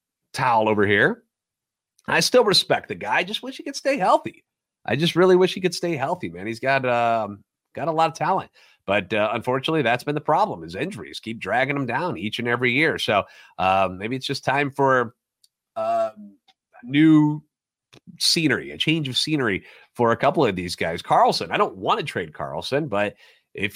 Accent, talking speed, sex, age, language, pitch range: American, 200 wpm, male, 30-49, English, 120-160 Hz